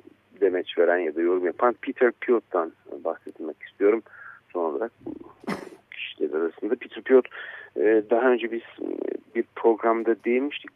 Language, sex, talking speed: Turkish, male, 130 wpm